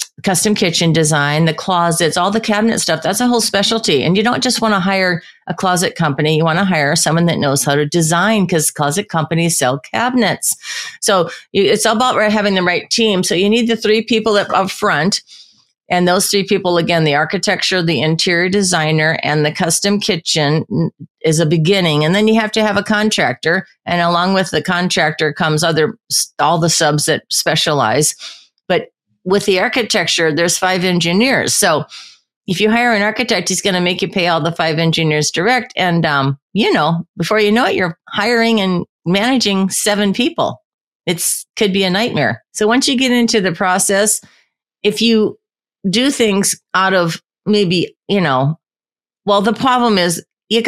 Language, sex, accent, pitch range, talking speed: English, female, American, 165-210 Hz, 180 wpm